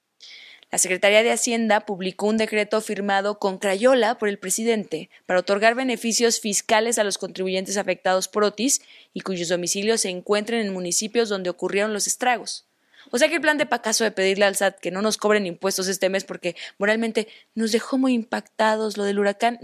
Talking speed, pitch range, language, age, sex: 185 wpm, 190-235 Hz, Spanish, 20-39, female